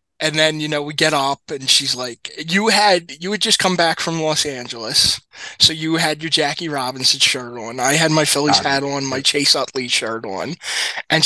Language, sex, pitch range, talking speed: English, male, 140-215 Hz, 215 wpm